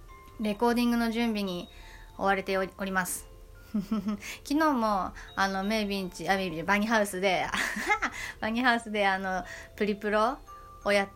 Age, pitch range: 20-39, 190-225 Hz